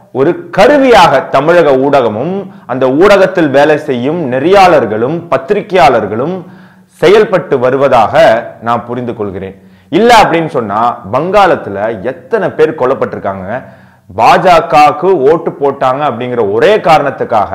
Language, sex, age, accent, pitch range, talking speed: Tamil, male, 30-49, native, 130-190 Hz, 95 wpm